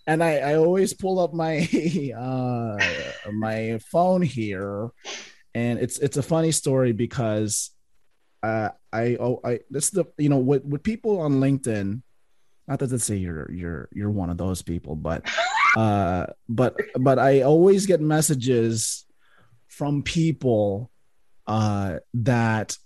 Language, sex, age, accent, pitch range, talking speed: English, male, 30-49, American, 115-155 Hz, 140 wpm